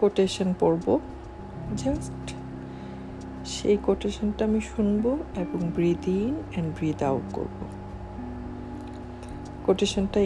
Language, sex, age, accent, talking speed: Bengali, female, 50-69, native, 90 wpm